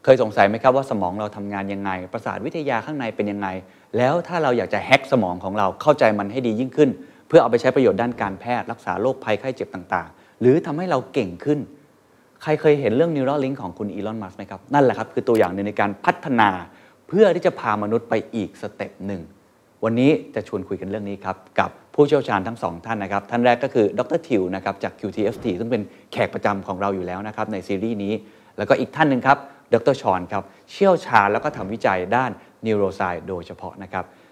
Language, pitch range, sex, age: Thai, 100-135 Hz, male, 30-49